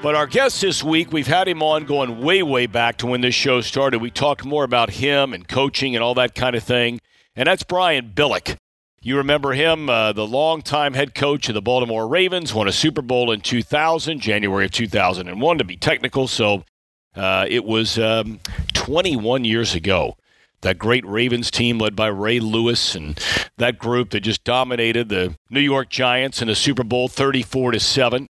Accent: American